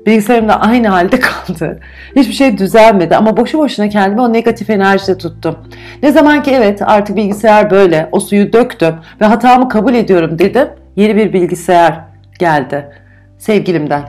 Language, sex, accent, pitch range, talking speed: Turkish, female, native, 175-230 Hz, 155 wpm